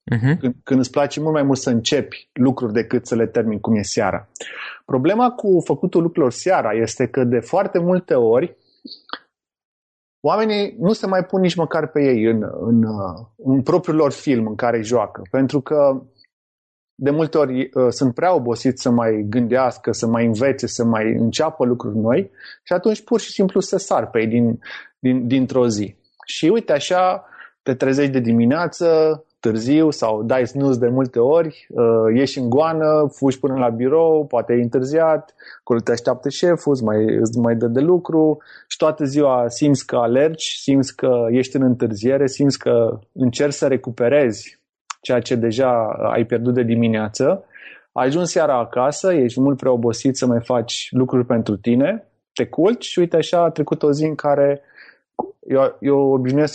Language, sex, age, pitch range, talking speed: Romanian, male, 30-49, 120-150 Hz, 170 wpm